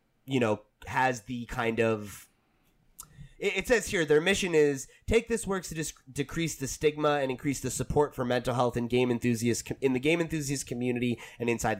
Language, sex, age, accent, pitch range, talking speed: English, male, 20-39, American, 95-125 Hz, 190 wpm